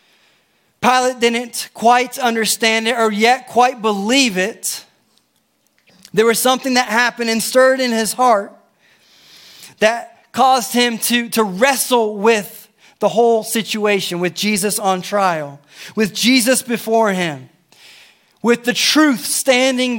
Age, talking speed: 30-49, 125 wpm